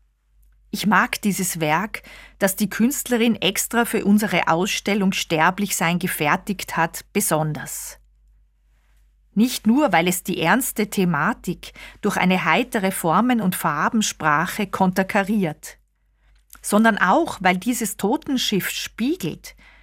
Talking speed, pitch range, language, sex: 105 wpm, 165-220 Hz, German, female